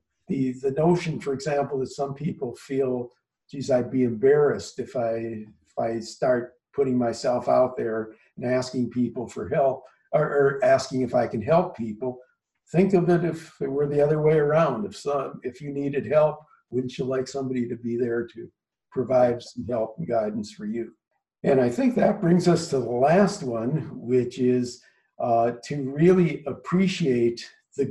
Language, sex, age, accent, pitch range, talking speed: English, male, 50-69, American, 120-155 Hz, 180 wpm